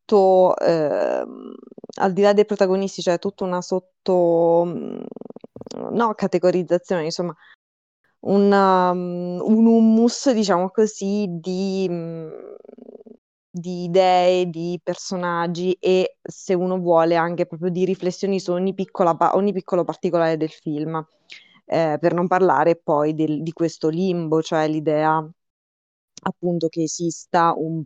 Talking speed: 110 wpm